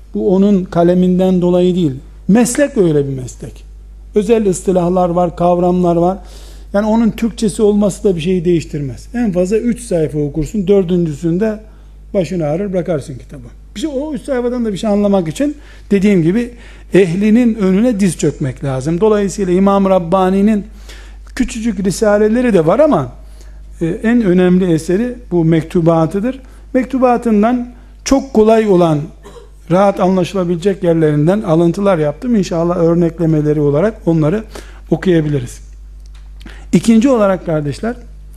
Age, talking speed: 60-79, 125 wpm